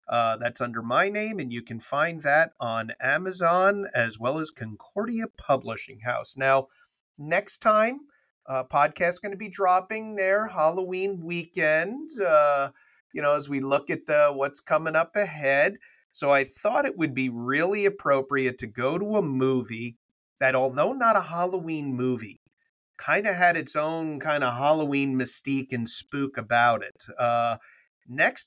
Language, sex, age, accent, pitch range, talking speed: English, male, 40-59, American, 120-155 Hz, 160 wpm